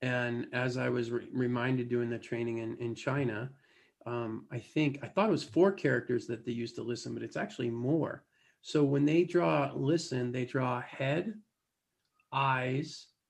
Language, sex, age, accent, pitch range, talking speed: English, male, 40-59, American, 135-160 Hz, 170 wpm